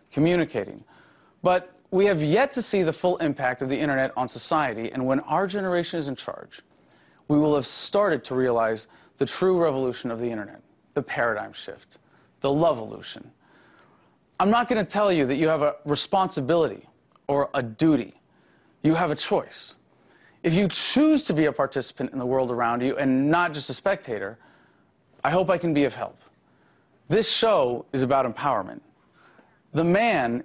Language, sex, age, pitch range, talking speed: English, male, 30-49, 130-180 Hz, 175 wpm